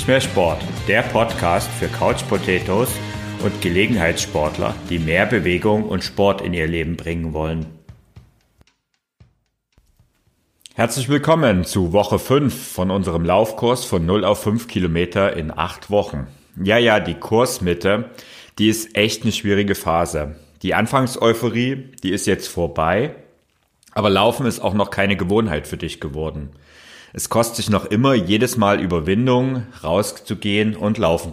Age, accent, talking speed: 40-59, German, 135 wpm